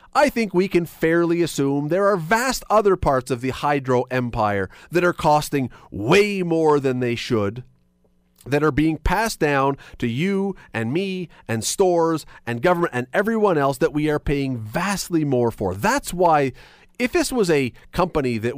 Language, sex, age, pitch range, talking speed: English, male, 40-59, 120-170 Hz, 175 wpm